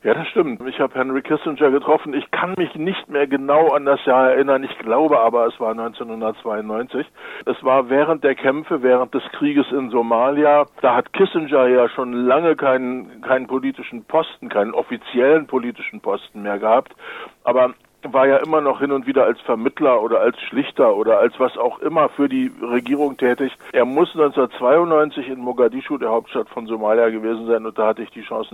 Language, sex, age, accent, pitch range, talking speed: German, male, 60-79, German, 120-145 Hz, 185 wpm